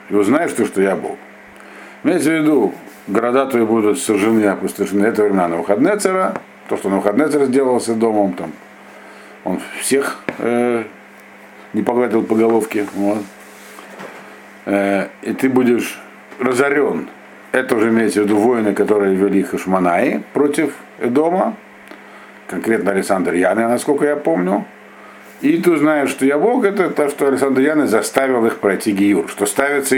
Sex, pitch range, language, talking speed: male, 100-130 Hz, Russian, 140 wpm